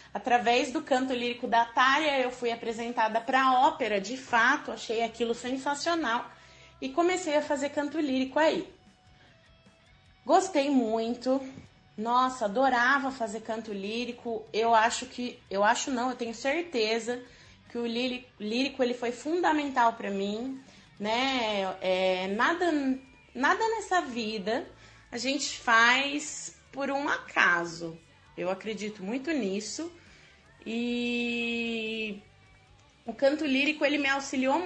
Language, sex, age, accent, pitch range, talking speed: Portuguese, female, 20-39, Brazilian, 225-290 Hz, 125 wpm